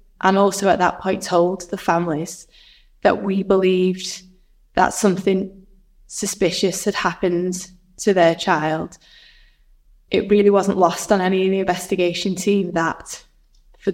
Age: 10-29